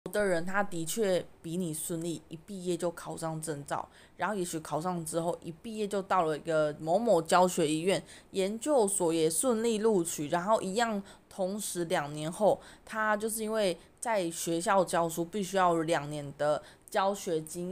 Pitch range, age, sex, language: 165-210 Hz, 20-39, female, Chinese